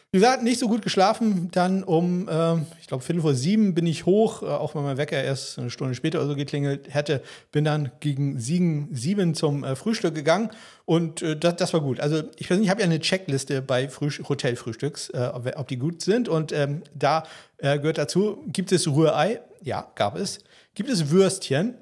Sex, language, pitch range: male, German, 135-185 Hz